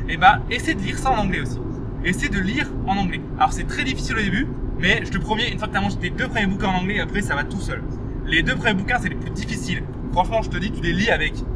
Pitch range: 130-195 Hz